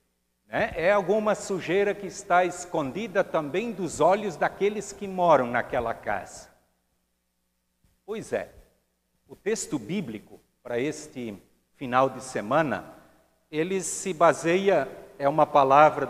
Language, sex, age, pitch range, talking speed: Portuguese, male, 60-79, 120-185 Hz, 110 wpm